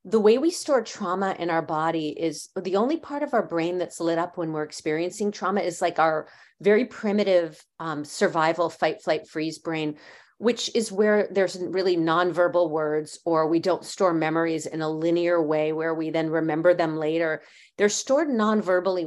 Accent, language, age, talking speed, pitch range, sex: American, English, 40-59, 185 wpm, 165-215 Hz, female